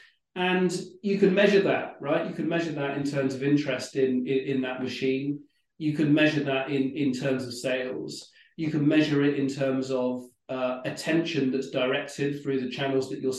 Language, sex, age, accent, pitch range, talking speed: English, male, 40-59, British, 130-155 Hz, 195 wpm